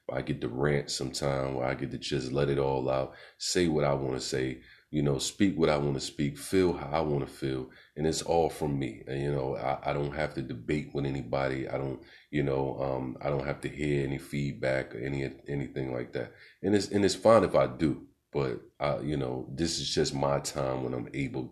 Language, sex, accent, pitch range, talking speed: English, male, American, 65-75 Hz, 245 wpm